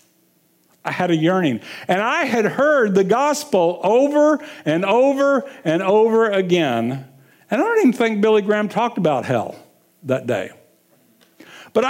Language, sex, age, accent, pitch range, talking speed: English, male, 50-69, American, 175-250 Hz, 145 wpm